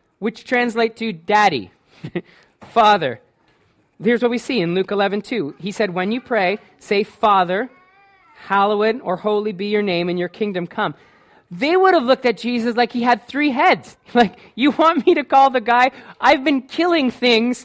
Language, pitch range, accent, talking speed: English, 210-260 Hz, American, 175 wpm